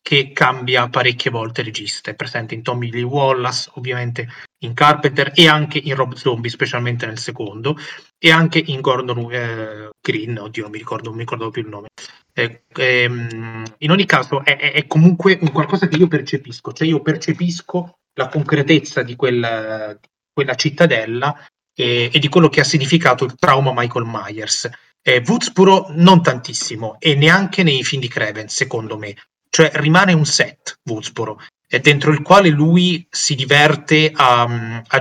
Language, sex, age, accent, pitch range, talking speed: Italian, male, 30-49, native, 120-150 Hz, 170 wpm